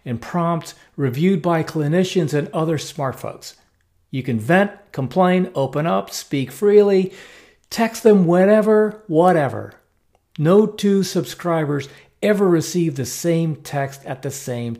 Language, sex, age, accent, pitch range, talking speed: English, male, 50-69, American, 130-175 Hz, 130 wpm